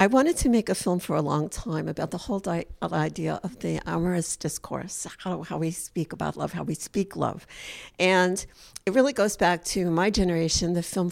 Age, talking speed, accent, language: 60-79, 205 wpm, American, English